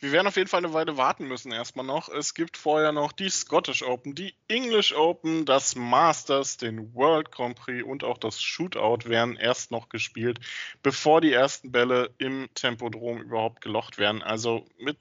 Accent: German